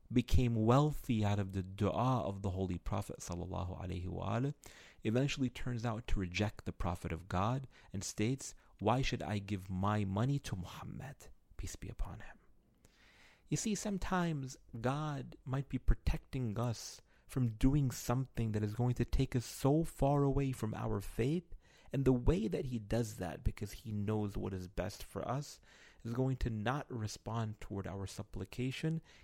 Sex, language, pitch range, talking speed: male, English, 105-140 Hz, 170 wpm